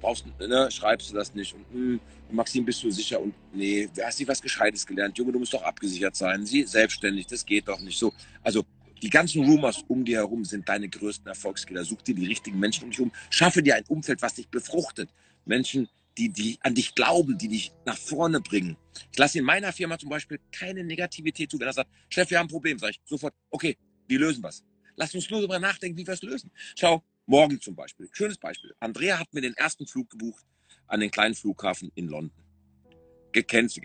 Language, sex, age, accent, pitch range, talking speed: German, male, 40-59, German, 105-175 Hz, 220 wpm